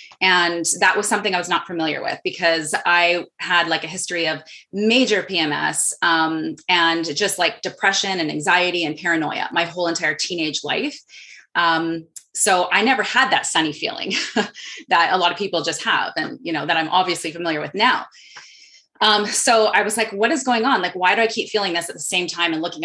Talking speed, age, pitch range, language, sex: 205 wpm, 30-49, 165-195 Hz, English, female